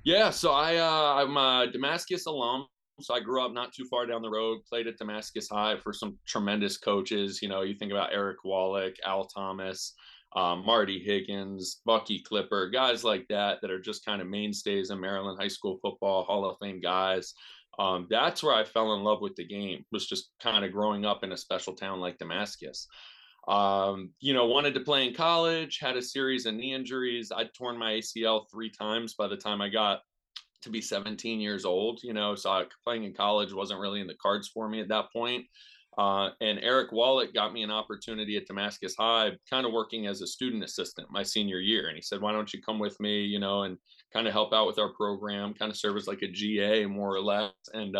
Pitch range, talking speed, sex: 100-115 Hz, 220 wpm, male